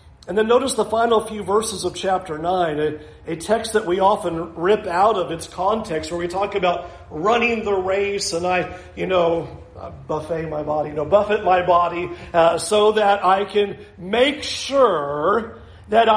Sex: male